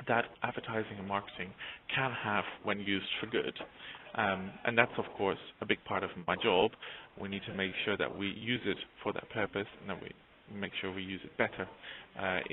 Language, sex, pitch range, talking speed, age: English, male, 100-115 Hz, 205 wpm, 30-49